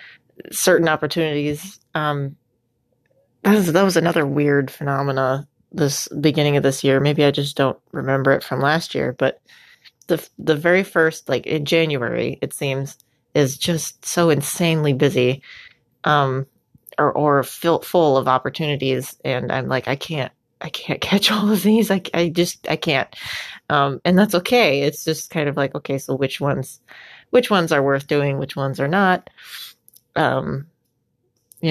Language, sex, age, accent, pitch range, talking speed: English, female, 30-49, American, 135-175 Hz, 160 wpm